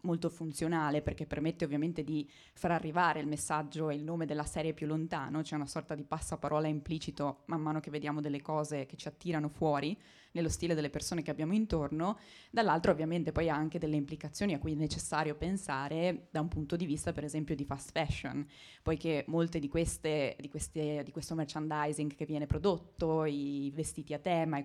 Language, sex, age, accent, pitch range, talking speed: Italian, female, 20-39, native, 150-165 Hz, 195 wpm